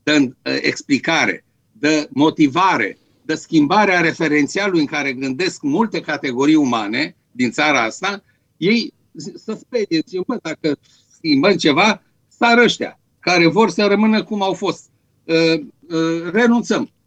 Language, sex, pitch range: Romanian, male, 135-205 Hz